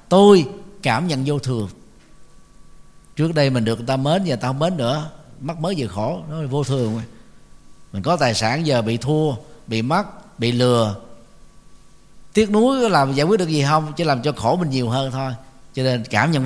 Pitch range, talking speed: 120-165 Hz, 205 wpm